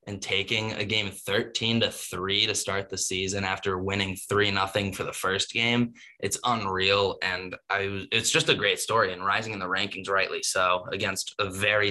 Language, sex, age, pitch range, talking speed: English, male, 10-29, 100-120 Hz, 190 wpm